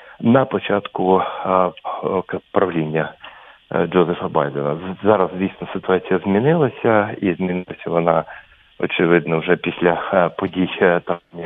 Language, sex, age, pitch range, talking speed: English, male, 40-59, 85-100 Hz, 95 wpm